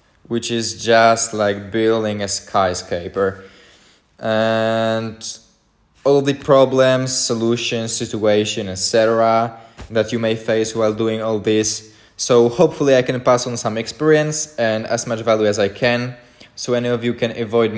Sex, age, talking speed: male, 20-39, 145 wpm